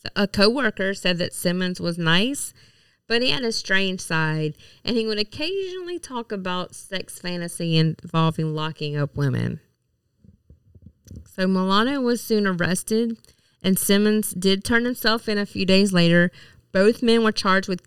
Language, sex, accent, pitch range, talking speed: English, female, American, 160-205 Hz, 150 wpm